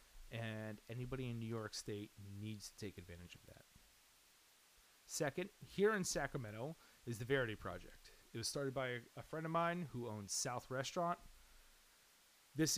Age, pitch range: 30-49, 110-145 Hz